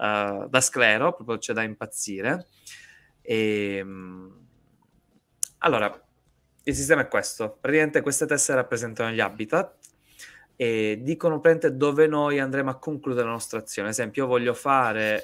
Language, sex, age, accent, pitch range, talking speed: Italian, male, 20-39, native, 105-135 Hz, 125 wpm